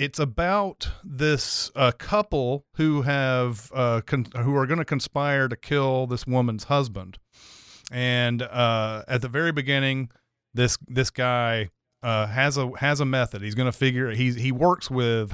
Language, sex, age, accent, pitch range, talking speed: English, male, 30-49, American, 115-140 Hz, 170 wpm